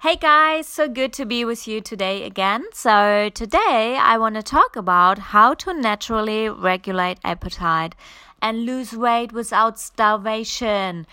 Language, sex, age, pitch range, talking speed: English, female, 20-39, 195-235 Hz, 145 wpm